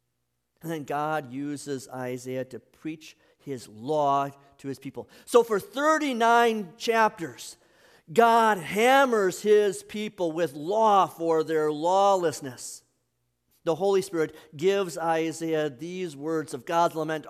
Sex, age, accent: male, 50-69, American